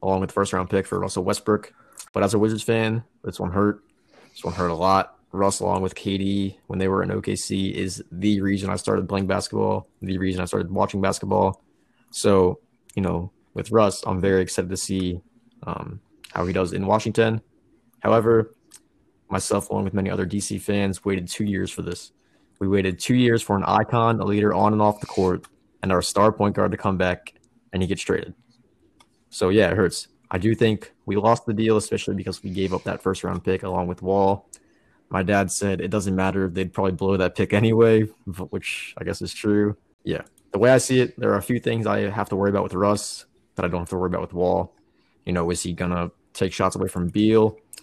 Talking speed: 220 wpm